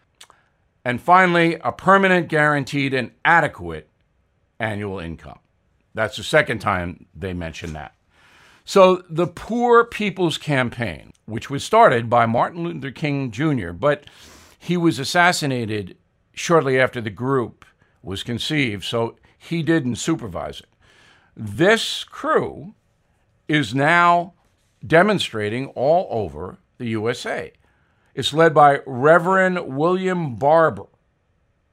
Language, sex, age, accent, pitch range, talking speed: English, male, 60-79, American, 110-165 Hz, 110 wpm